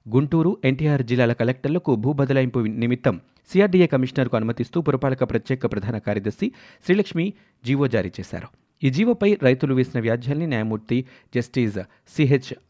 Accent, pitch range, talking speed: native, 120-150 Hz, 130 wpm